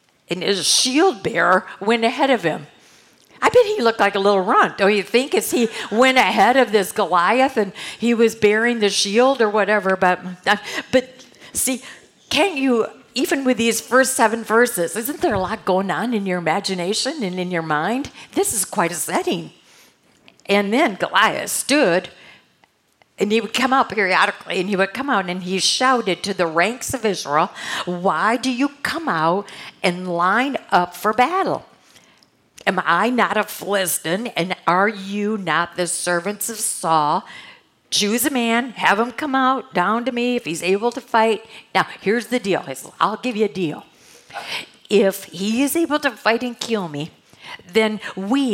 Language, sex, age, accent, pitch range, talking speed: English, female, 50-69, American, 185-245 Hz, 175 wpm